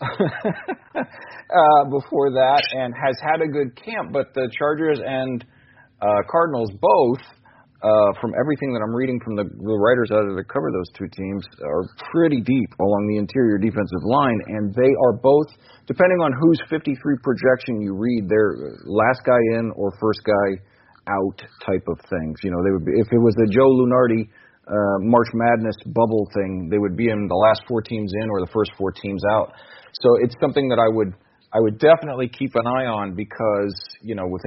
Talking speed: 195 wpm